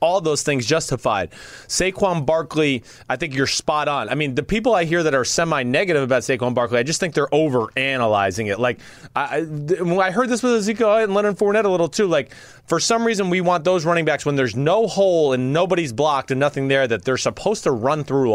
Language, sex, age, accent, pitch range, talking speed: English, male, 30-49, American, 135-205 Hz, 220 wpm